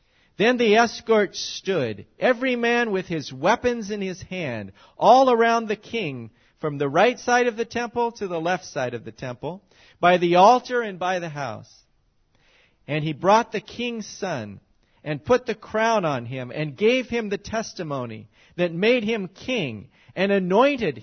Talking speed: 170 wpm